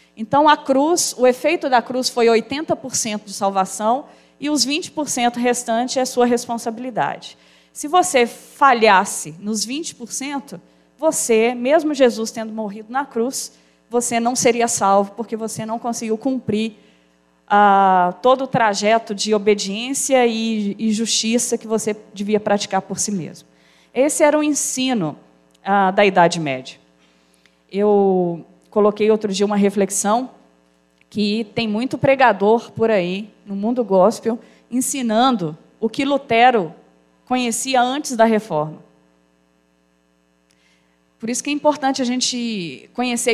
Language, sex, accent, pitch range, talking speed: Portuguese, female, Brazilian, 195-245 Hz, 130 wpm